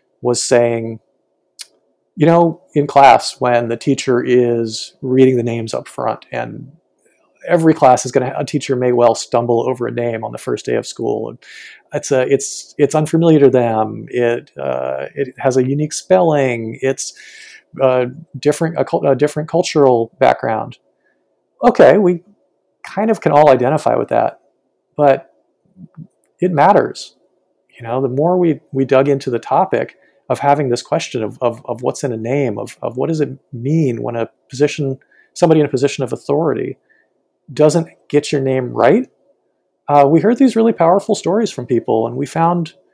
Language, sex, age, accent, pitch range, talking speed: English, male, 40-59, American, 125-160 Hz, 170 wpm